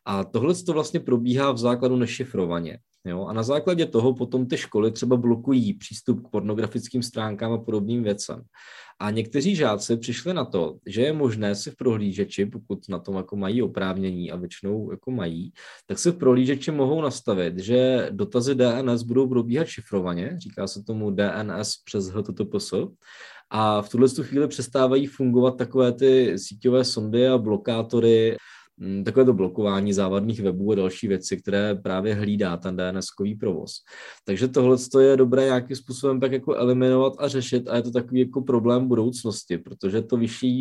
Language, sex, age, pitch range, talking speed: Czech, male, 20-39, 100-130 Hz, 165 wpm